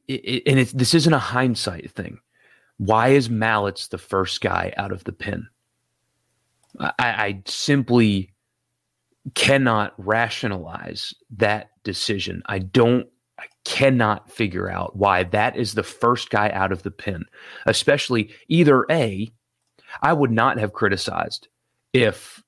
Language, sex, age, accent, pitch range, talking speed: English, male, 30-49, American, 100-125 Hz, 135 wpm